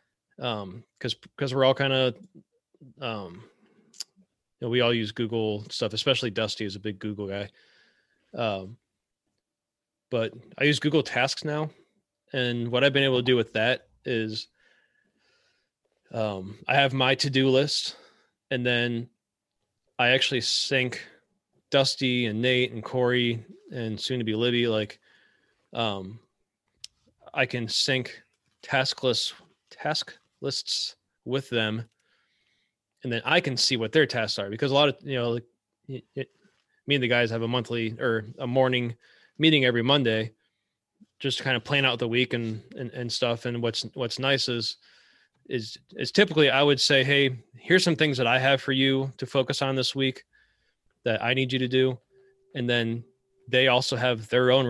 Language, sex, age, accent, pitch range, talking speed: English, male, 20-39, American, 115-135 Hz, 165 wpm